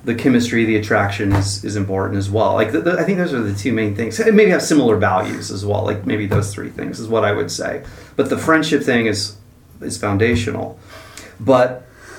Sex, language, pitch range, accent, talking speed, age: male, English, 105-120 Hz, American, 210 wpm, 30-49